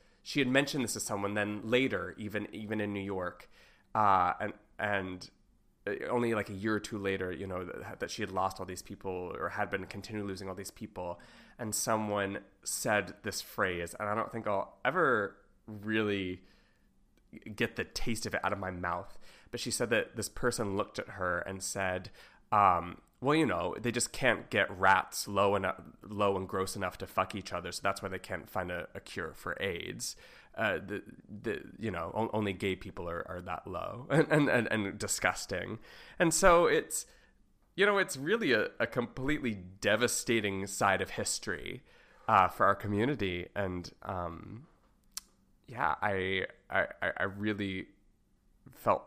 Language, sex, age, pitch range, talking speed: English, male, 20-39, 95-110 Hz, 180 wpm